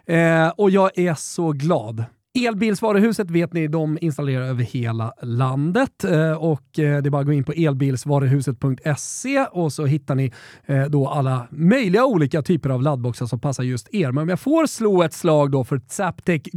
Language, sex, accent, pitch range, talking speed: Swedish, male, native, 135-185 Hz, 175 wpm